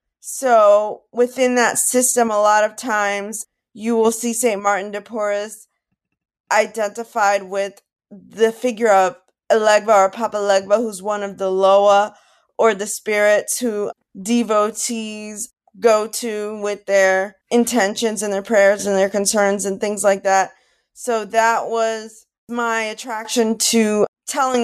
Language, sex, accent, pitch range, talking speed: English, female, American, 200-230 Hz, 135 wpm